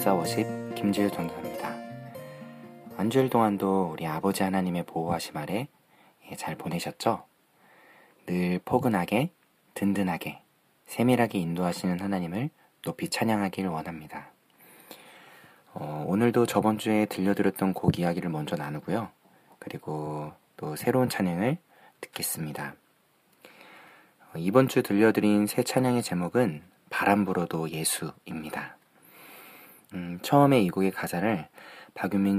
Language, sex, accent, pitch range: Korean, male, native, 85-115 Hz